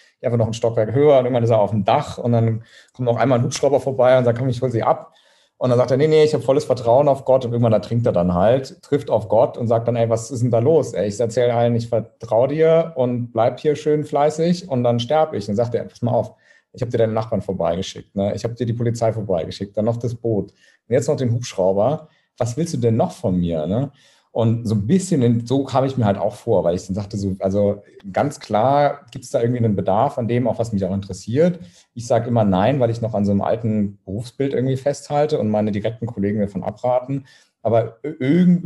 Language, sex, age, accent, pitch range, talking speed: German, male, 40-59, German, 105-130 Hz, 260 wpm